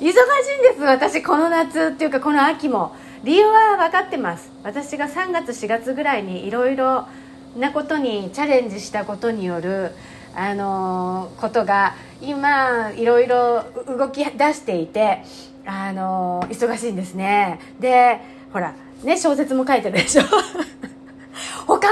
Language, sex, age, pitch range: Japanese, female, 40-59, 195-310 Hz